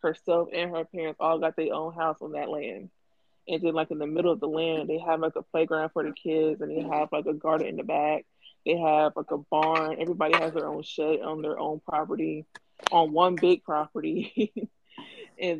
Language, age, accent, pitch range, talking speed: English, 20-39, American, 160-180 Hz, 220 wpm